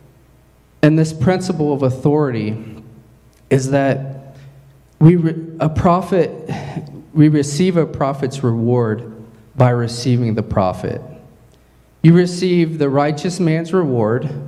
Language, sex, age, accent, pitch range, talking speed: English, male, 40-59, American, 125-155 Hz, 110 wpm